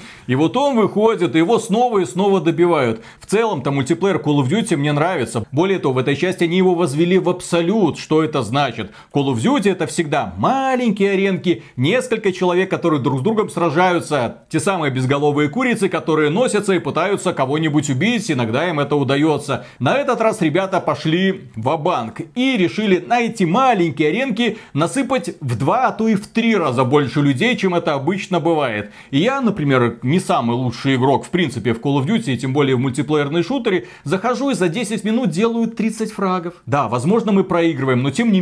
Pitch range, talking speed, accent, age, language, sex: 150-205 Hz, 185 wpm, native, 30-49, Russian, male